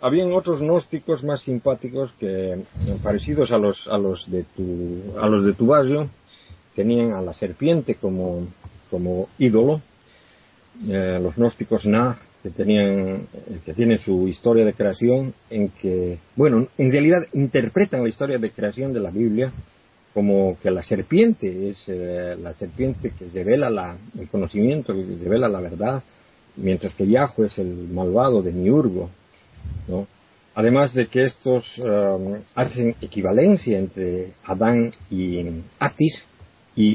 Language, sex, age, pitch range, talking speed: Spanish, male, 50-69, 95-125 Hz, 130 wpm